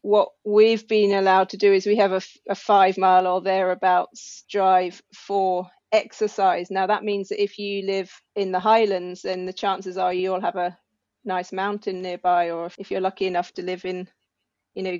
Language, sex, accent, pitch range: English, female, British, 185-210 Hz